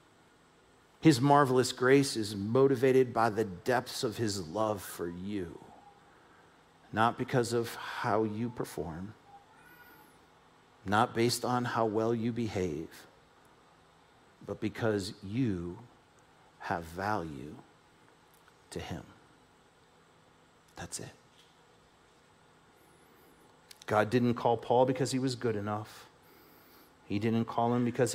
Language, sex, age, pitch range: English, male, 50-69, 105-130 Hz